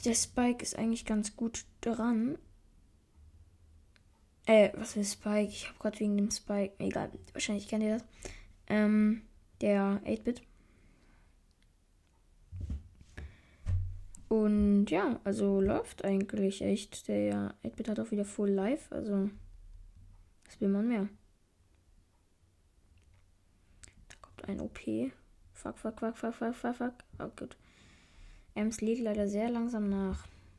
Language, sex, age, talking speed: German, female, 20-39, 125 wpm